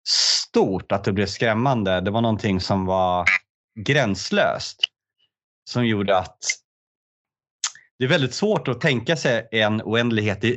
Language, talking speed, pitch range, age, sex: Swedish, 130 wpm, 95-120 Hz, 30-49, male